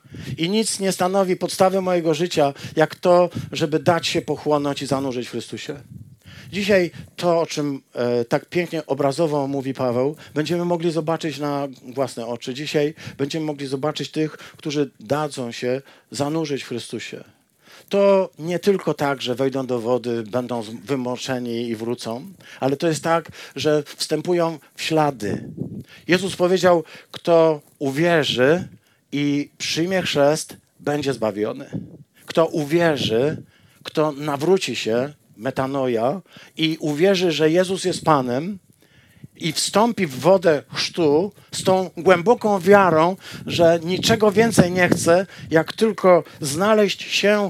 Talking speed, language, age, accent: 130 wpm, Polish, 50-69, native